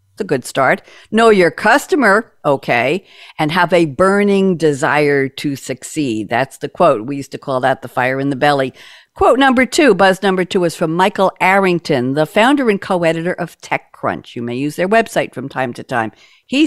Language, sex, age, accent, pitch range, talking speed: English, female, 60-79, American, 145-195 Hz, 190 wpm